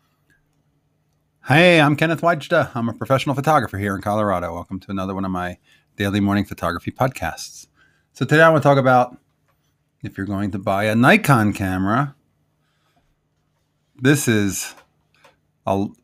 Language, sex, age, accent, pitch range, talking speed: English, male, 40-59, American, 95-120 Hz, 145 wpm